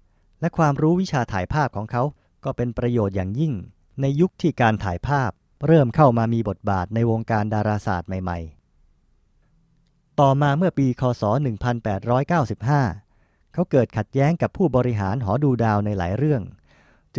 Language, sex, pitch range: Thai, male, 105-140 Hz